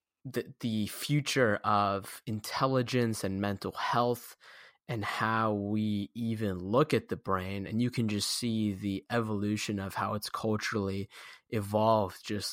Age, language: 10-29, English